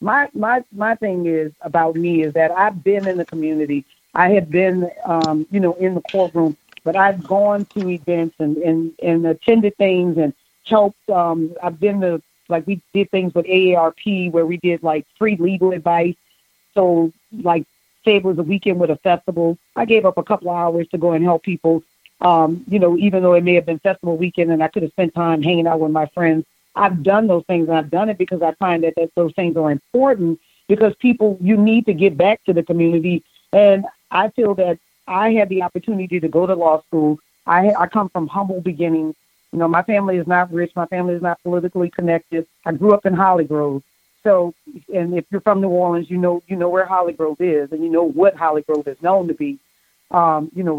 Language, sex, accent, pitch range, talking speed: English, female, American, 165-190 Hz, 220 wpm